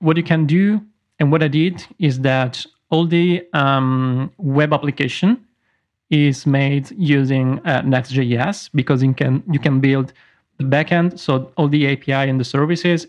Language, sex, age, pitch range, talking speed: English, male, 40-59, 135-165 Hz, 160 wpm